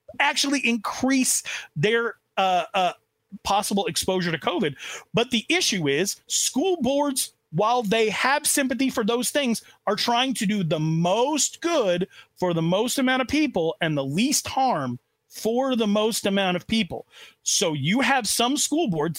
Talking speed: 160 wpm